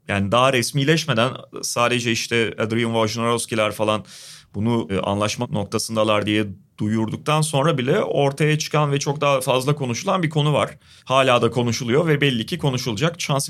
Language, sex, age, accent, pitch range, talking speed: Turkish, male, 30-49, native, 115-145 Hz, 145 wpm